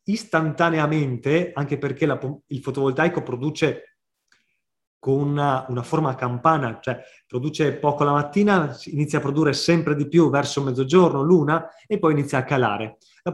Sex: male